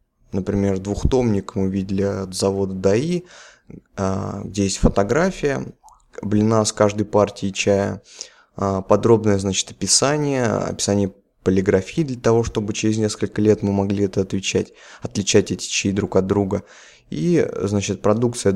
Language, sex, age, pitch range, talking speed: Russian, male, 20-39, 95-105 Hz, 125 wpm